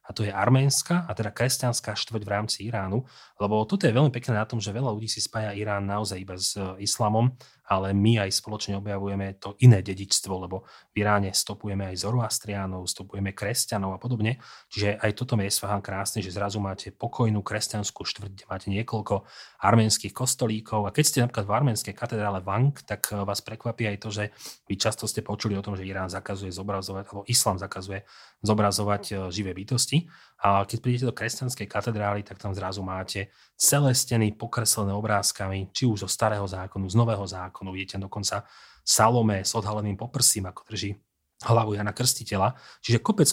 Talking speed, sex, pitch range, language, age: 175 wpm, male, 100-115 Hz, Slovak, 30-49